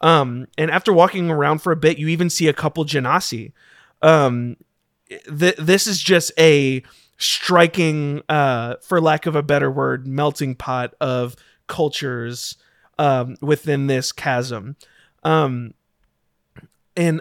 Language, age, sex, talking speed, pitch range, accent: English, 30-49, male, 130 wpm, 135-165 Hz, American